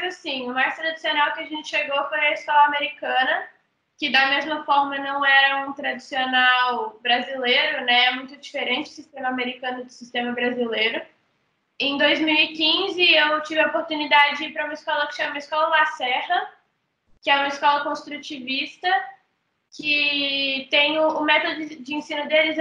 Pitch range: 270-310 Hz